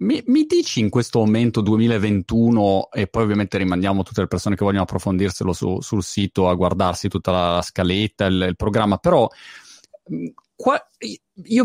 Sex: male